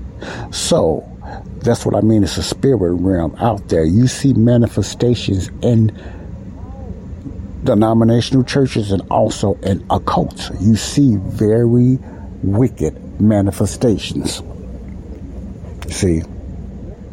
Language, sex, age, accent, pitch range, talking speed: English, male, 60-79, American, 90-110 Hz, 95 wpm